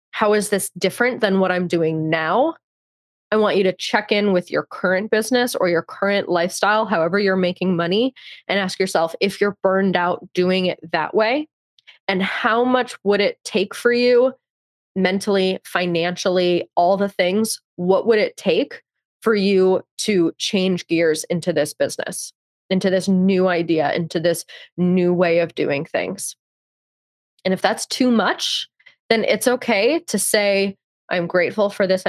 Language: English